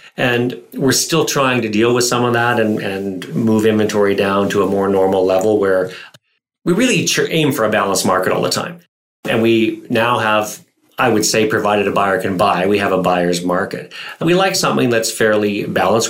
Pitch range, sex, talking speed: 95-110 Hz, male, 205 wpm